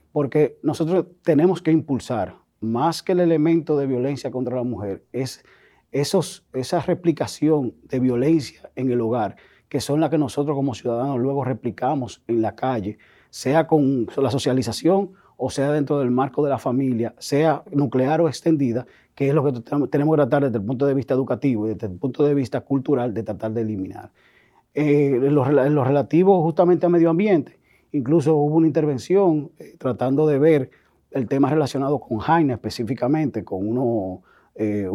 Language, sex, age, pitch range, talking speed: Spanish, male, 30-49, 120-150 Hz, 170 wpm